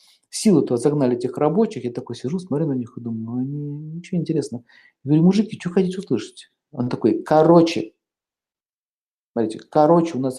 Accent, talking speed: native, 170 wpm